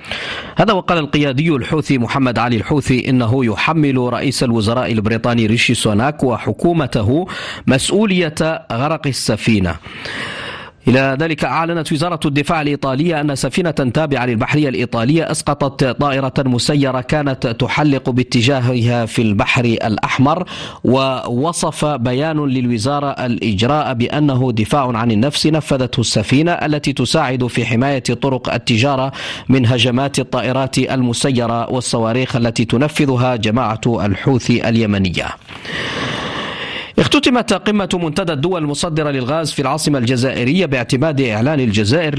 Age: 40-59